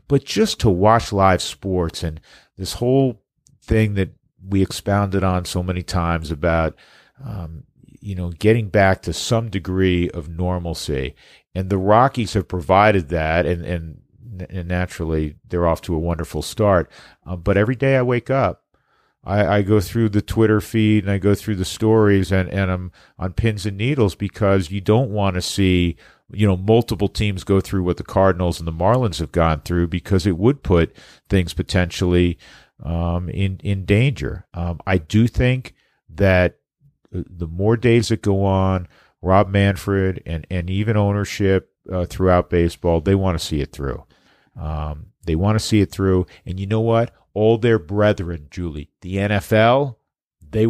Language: English